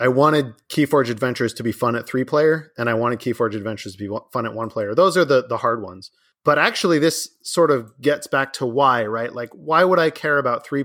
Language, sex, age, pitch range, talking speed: English, male, 30-49, 125-175 Hz, 250 wpm